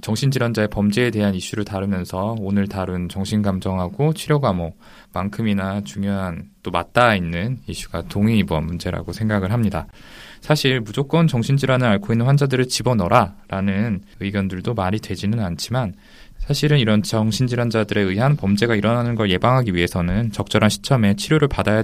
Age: 20-39